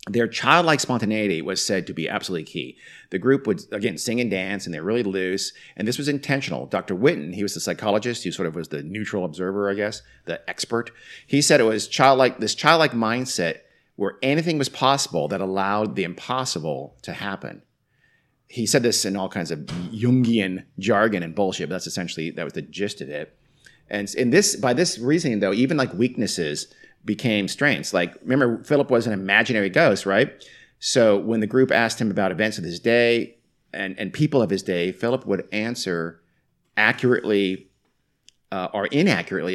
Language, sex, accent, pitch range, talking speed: English, male, American, 100-125 Hz, 185 wpm